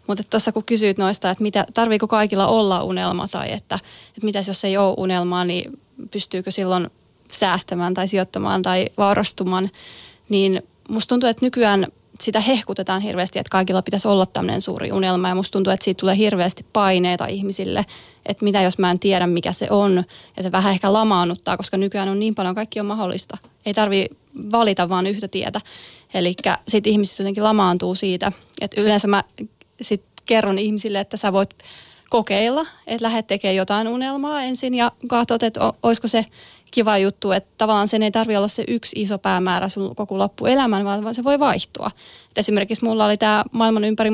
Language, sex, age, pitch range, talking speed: Finnish, female, 20-39, 190-220 Hz, 180 wpm